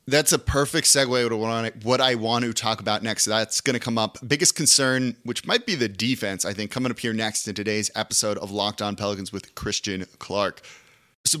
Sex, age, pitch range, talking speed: male, 30-49, 110-145 Hz, 215 wpm